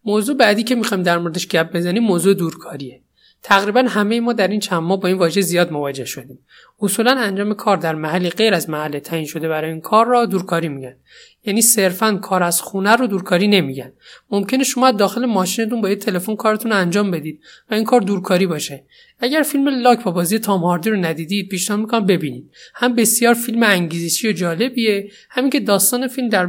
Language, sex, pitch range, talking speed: Persian, male, 170-225 Hz, 190 wpm